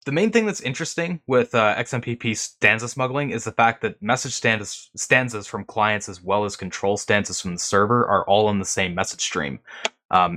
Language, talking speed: English, 195 wpm